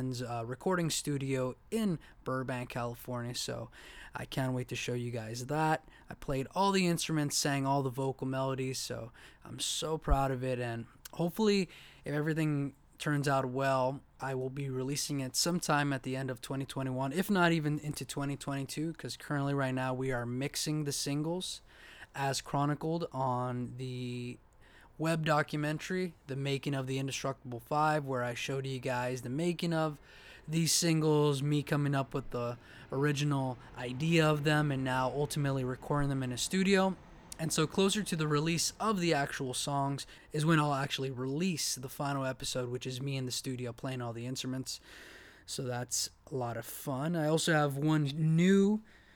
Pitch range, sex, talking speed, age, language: 130-155 Hz, male, 170 wpm, 20-39, English